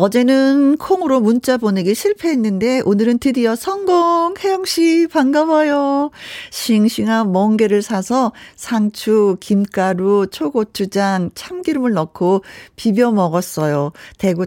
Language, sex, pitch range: Korean, female, 185-285 Hz